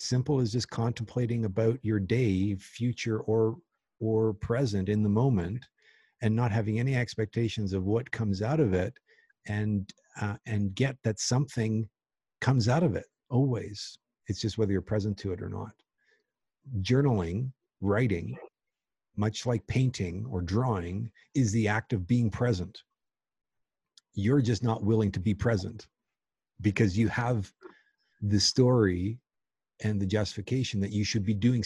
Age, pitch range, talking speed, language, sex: 50-69, 100-120 Hz, 150 wpm, English, male